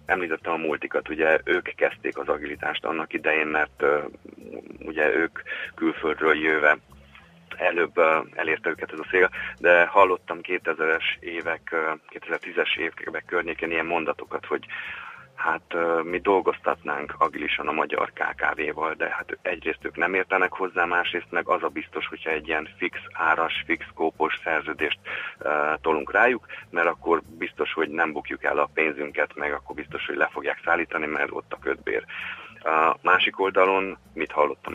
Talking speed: 155 wpm